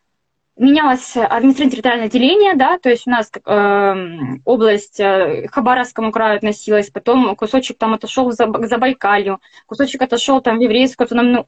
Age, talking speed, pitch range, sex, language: 20-39, 145 wpm, 215-285 Hz, female, English